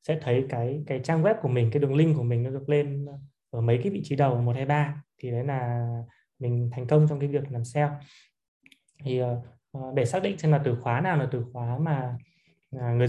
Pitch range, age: 125-150 Hz, 20-39